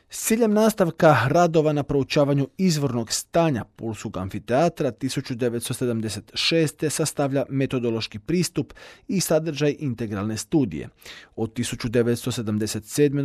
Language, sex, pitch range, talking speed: Croatian, male, 115-150 Hz, 90 wpm